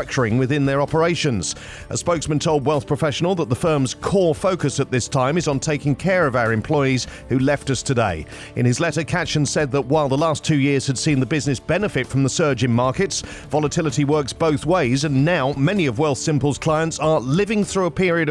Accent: British